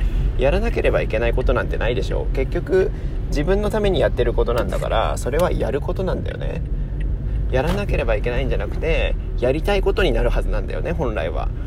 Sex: male